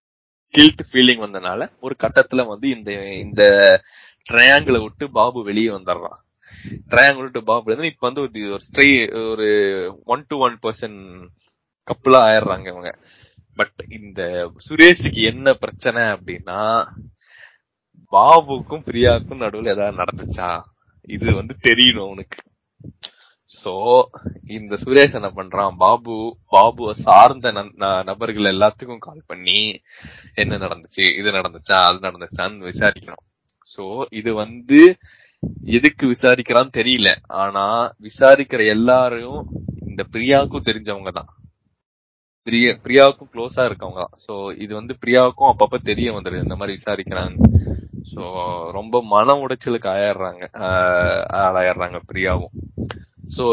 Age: 20-39